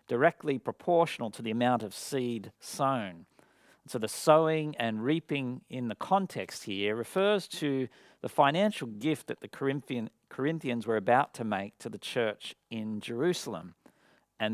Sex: male